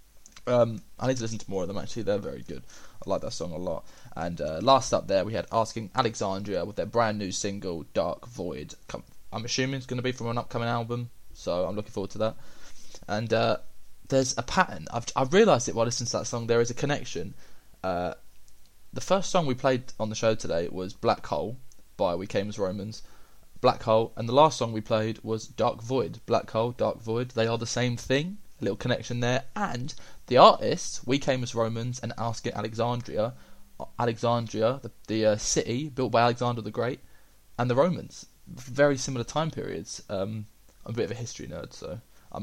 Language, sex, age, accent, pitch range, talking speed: English, male, 20-39, British, 110-125 Hz, 210 wpm